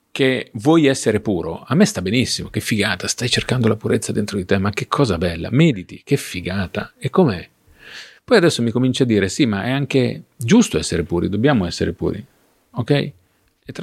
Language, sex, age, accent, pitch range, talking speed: Italian, male, 40-59, native, 95-125 Hz, 195 wpm